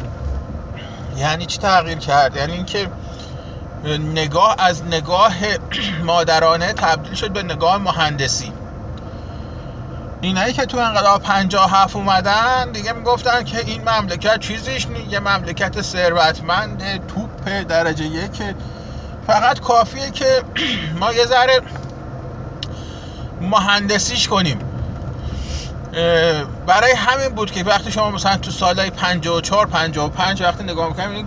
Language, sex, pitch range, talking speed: Persian, male, 155-205 Hz, 115 wpm